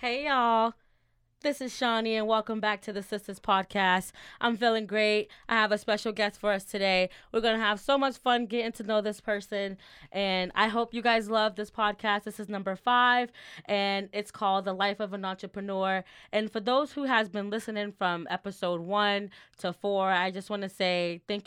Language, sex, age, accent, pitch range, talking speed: English, female, 10-29, American, 195-230 Hz, 205 wpm